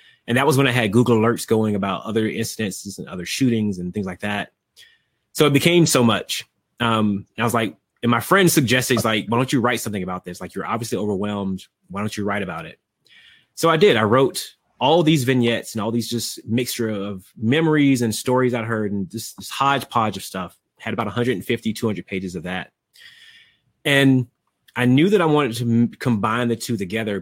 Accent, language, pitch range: American, English, 105-125 Hz